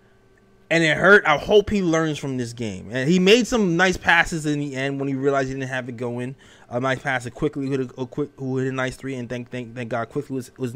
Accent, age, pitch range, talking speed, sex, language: American, 20-39, 125-155 Hz, 275 wpm, male, English